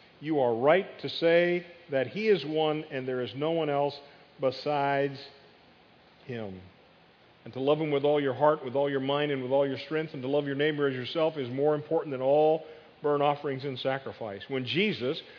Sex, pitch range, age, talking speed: male, 135-155 Hz, 50-69, 205 wpm